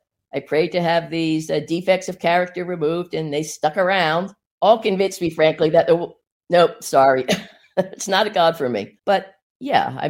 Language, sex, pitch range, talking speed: English, female, 135-175 Hz, 190 wpm